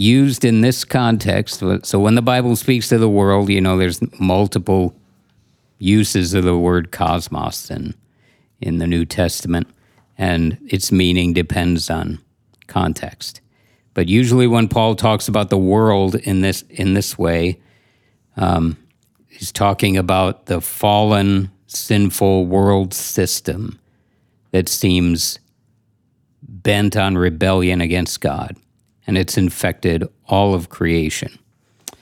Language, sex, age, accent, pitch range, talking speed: English, male, 60-79, American, 90-115 Hz, 125 wpm